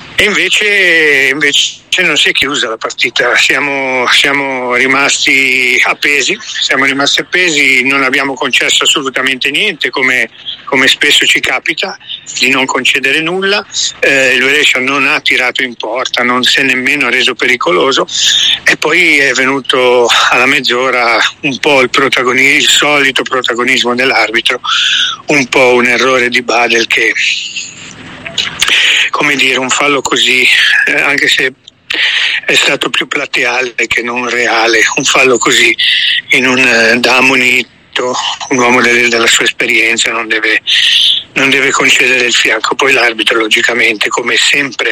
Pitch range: 125-210 Hz